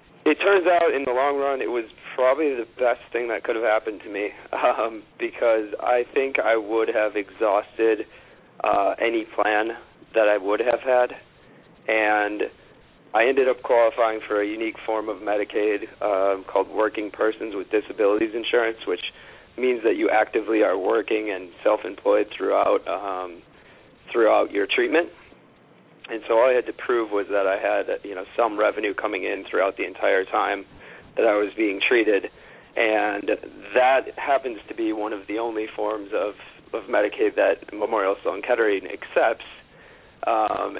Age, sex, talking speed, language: 40-59, male, 160 wpm, English